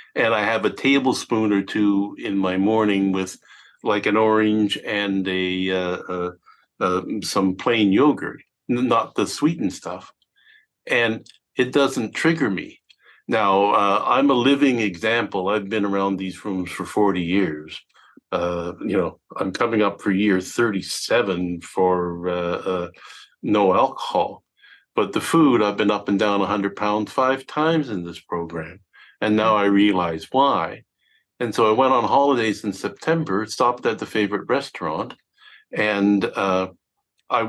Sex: male